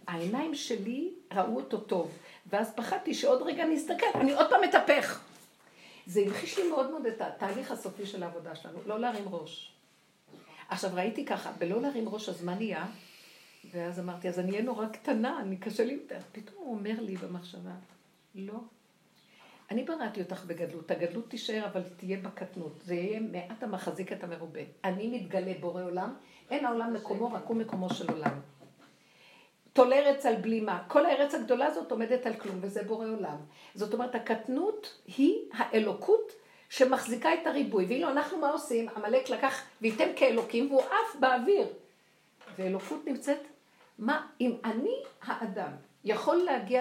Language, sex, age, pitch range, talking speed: Hebrew, female, 60-79, 190-260 Hz, 160 wpm